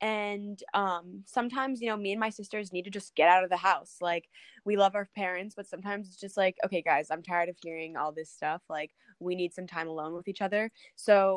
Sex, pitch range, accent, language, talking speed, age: female, 175-205 Hz, American, English, 245 wpm, 20-39